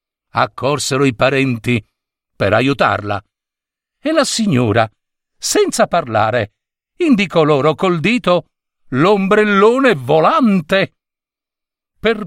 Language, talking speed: Italian, 85 wpm